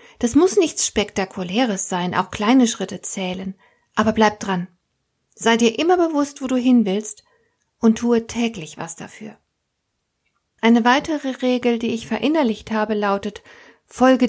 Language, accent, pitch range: German, German, 205-260 Hz